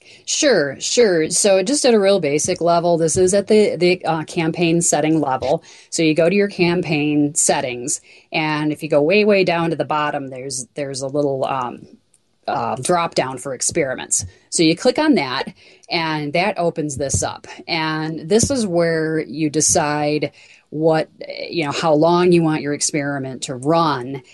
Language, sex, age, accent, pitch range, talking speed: English, female, 30-49, American, 145-175 Hz, 180 wpm